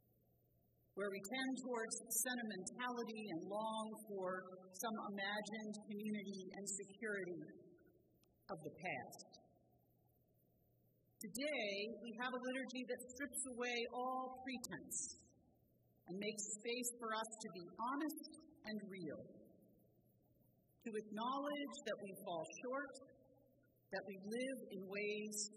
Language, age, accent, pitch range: English, 50-69, American, 195-250 Hz